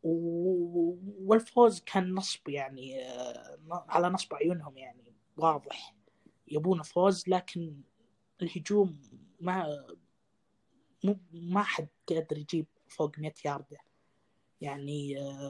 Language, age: Arabic, 20-39